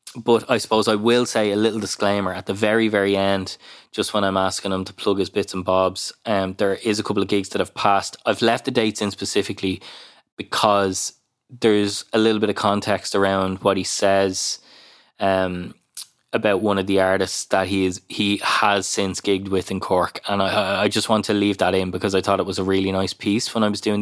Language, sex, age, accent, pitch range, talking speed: English, male, 20-39, Irish, 95-105 Hz, 225 wpm